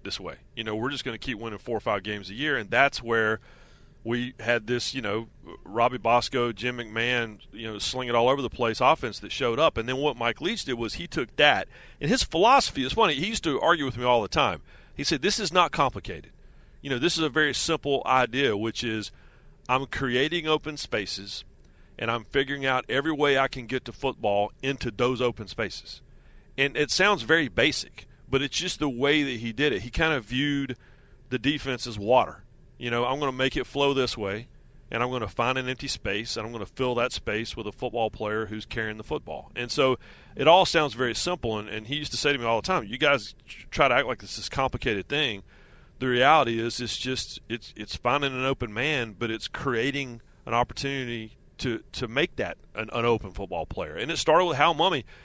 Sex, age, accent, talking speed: male, 40-59, American, 230 wpm